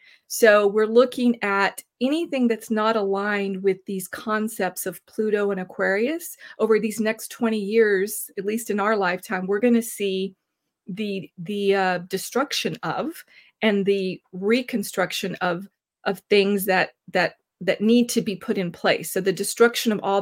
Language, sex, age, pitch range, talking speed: English, female, 40-59, 190-230 Hz, 160 wpm